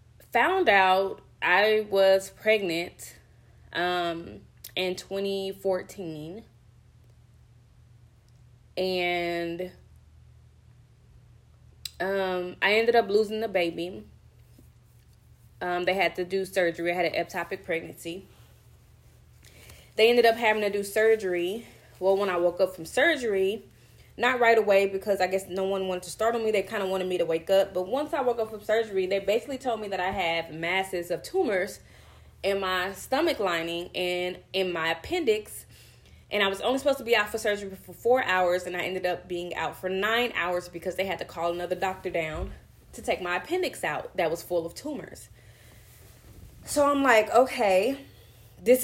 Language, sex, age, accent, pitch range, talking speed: English, female, 20-39, American, 170-210 Hz, 165 wpm